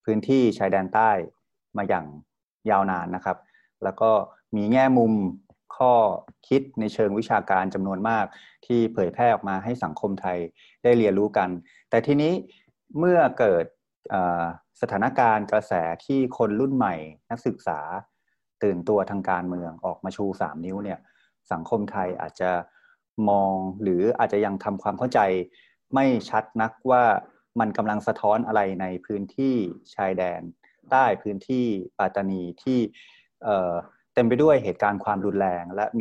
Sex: male